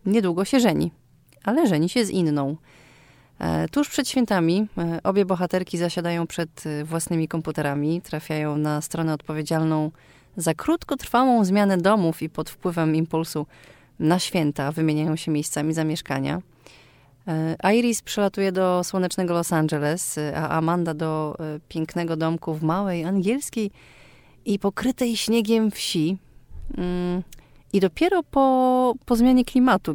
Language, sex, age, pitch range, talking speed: Polish, female, 30-49, 155-195 Hz, 120 wpm